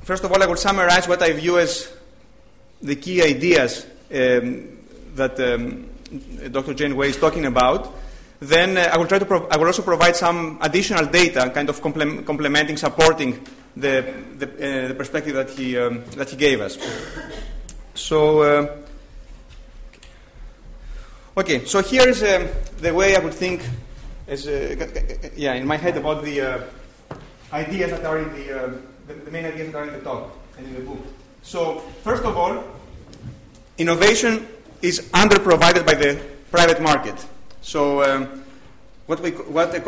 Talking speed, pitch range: 160 wpm, 140-175 Hz